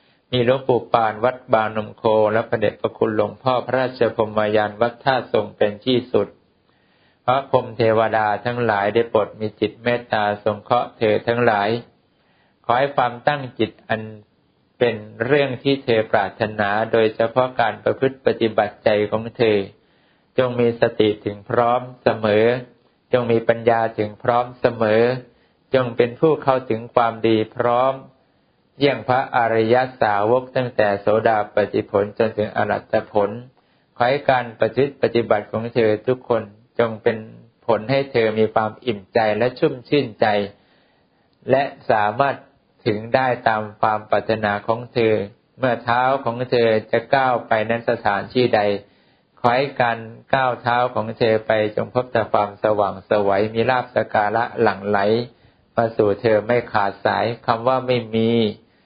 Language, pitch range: English, 110-125 Hz